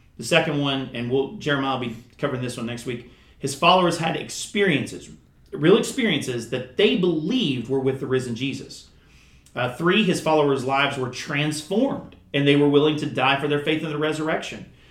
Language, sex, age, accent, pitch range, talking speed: English, male, 40-59, American, 120-160 Hz, 185 wpm